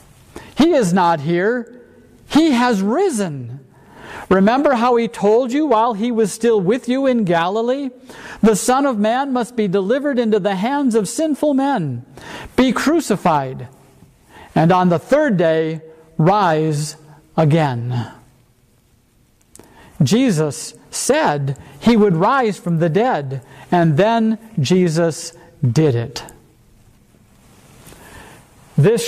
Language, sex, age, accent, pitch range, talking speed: English, male, 50-69, American, 145-220 Hz, 115 wpm